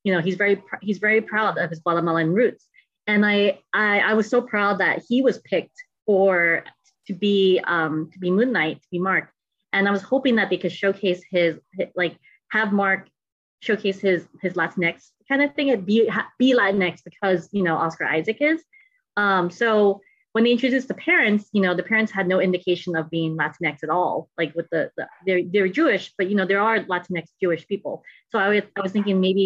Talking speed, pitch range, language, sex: 210 wpm, 175-210 Hz, English, female